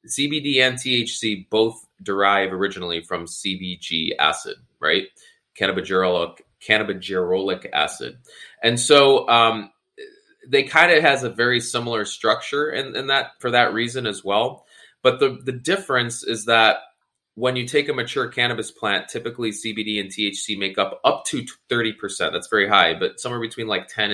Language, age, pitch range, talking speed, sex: English, 20-39, 105-155 Hz, 150 wpm, male